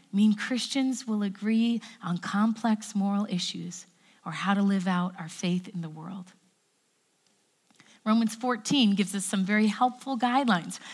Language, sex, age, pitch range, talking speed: English, female, 40-59, 200-265 Hz, 145 wpm